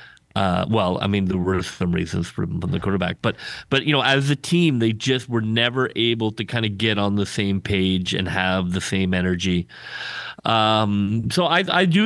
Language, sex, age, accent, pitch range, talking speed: English, male, 30-49, American, 100-125 Hz, 215 wpm